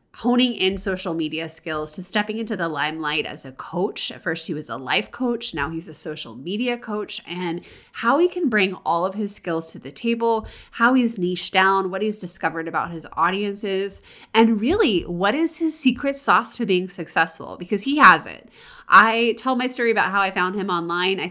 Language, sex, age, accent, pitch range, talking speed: English, female, 20-39, American, 165-225 Hz, 205 wpm